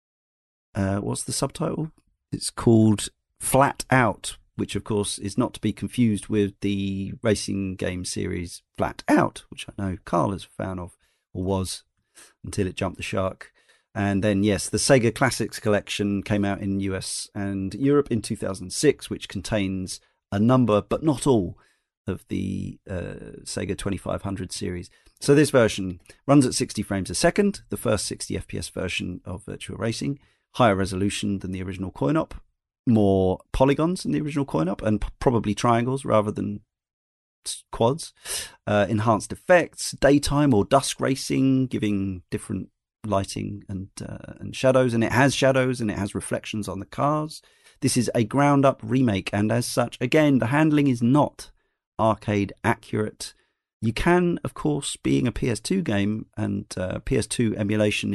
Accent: British